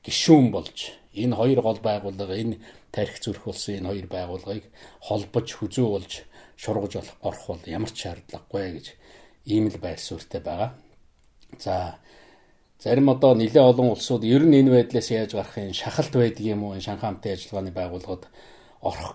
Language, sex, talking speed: English, male, 150 wpm